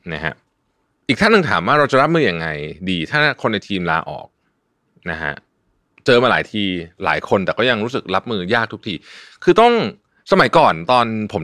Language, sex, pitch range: Thai, male, 85-130 Hz